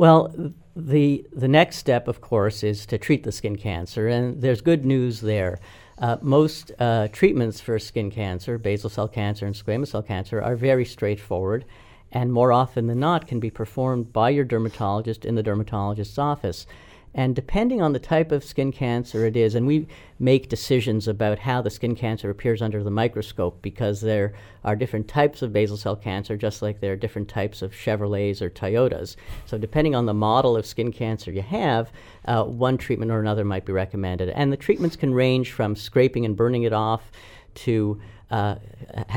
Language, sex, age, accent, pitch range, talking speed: English, female, 50-69, American, 105-125 Hz, 190 wpm